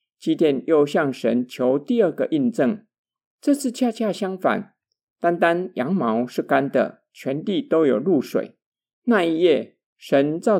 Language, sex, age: Chinese, male, 50-69